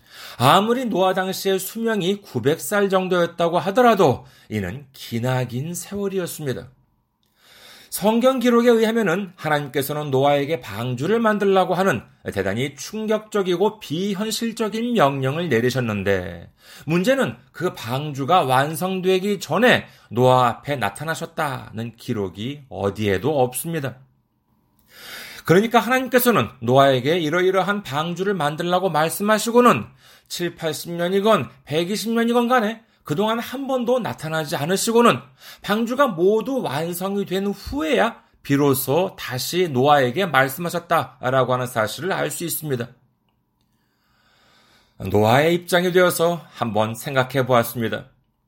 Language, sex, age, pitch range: Korean, male, 40-59, 130-205 Hz